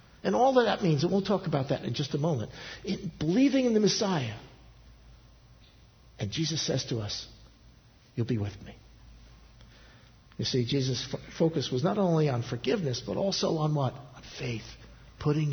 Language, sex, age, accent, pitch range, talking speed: English, male, 60-79, American, 120-160 Hz, 170 wpm